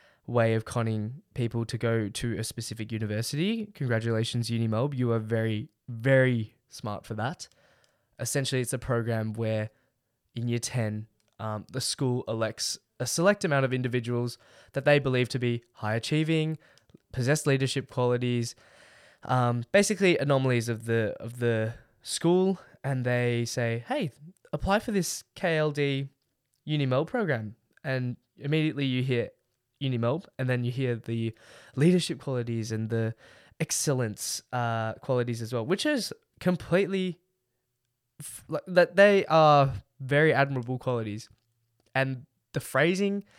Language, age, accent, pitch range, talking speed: English, 10-29, Australian, 115-150 Hz, 135 wpm